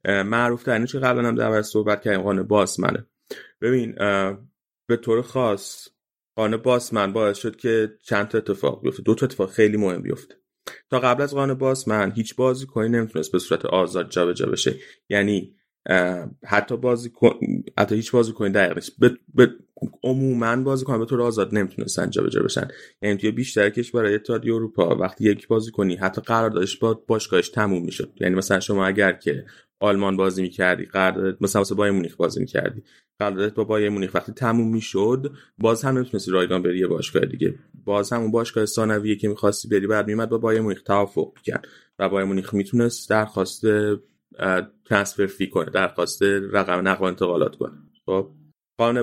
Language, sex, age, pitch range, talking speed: Persian, male, 30-49, 100-115 Hz, 175 wpm